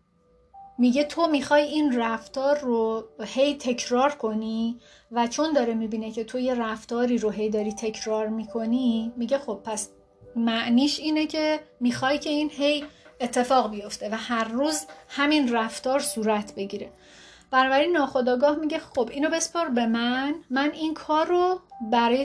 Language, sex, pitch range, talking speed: Persian, female, 220-285 Hz, 145 wpm